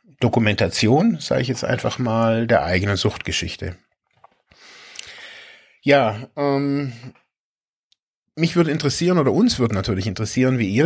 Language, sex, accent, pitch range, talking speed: German, male, German, 110-140 Hz, 115 wpm